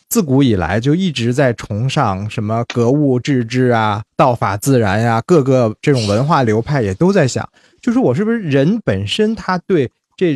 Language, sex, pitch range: Chinese, male, 115-160 Hz